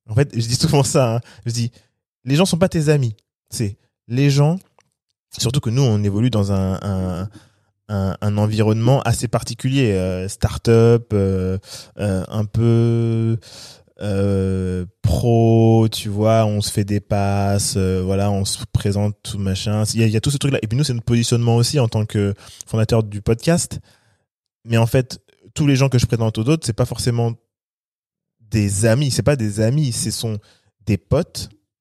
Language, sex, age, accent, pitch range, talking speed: French, male, 20-39, French, 105-135 Hz, 185 wpm